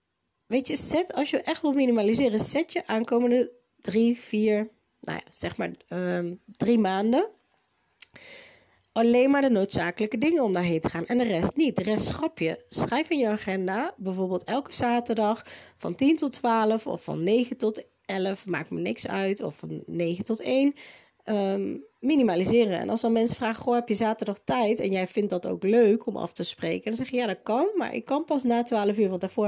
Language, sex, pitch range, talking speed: Dutch, female, 190-255 Hz, 200 wpm